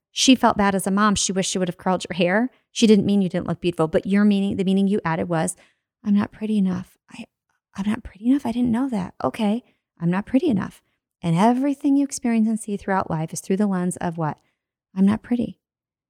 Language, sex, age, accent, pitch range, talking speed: English, female, 30-49, American, 185-220 Hz, 240 wpm